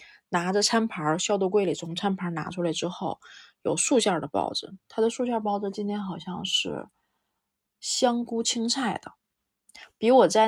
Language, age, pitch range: Chinese, 20-39, 175-215 Hz